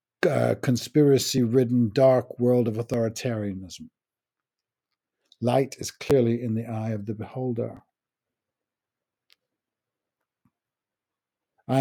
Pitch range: 120-145 Hz